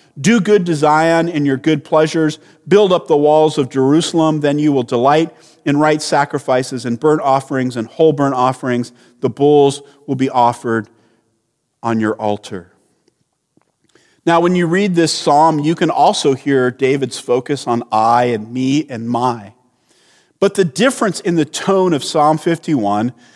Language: English